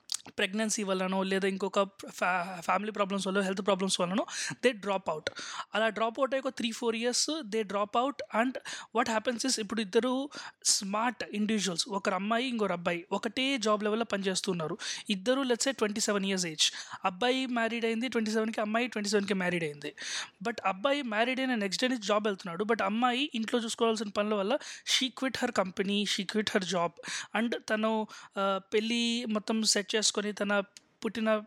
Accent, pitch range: native, 205-245 Hz